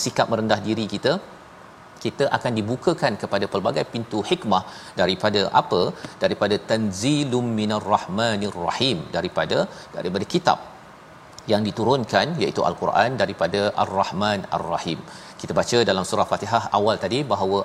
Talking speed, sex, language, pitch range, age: 120 wpm, male, Malayalam, 105-125 Hz, 40-59